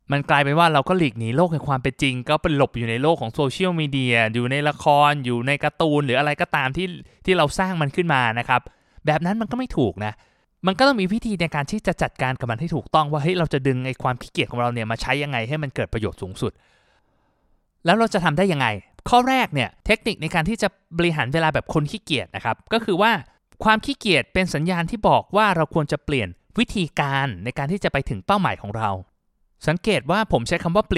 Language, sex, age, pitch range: Thai, male, 20-39, 130-180 Hz